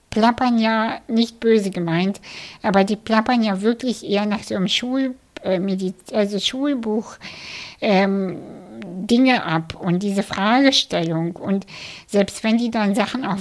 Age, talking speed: 60-79, 140 wpm